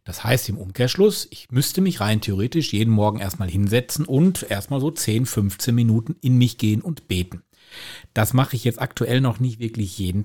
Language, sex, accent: German, male, German